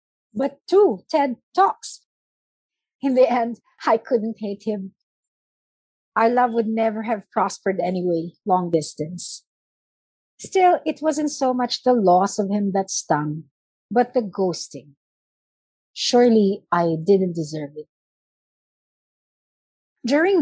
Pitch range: 170-215 Hz